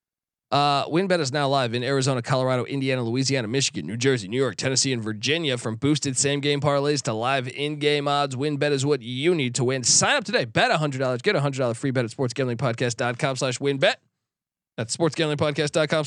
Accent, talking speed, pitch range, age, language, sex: American, 205 wpm, 130-155 Hz, 20-39, English, male